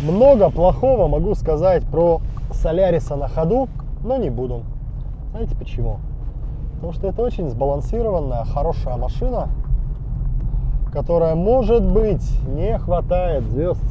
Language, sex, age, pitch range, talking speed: Russian, male, 20-39, 125-155 Hz, 110 wpm